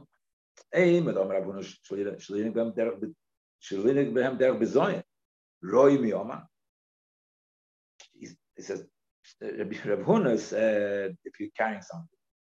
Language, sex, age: English, male, 50-69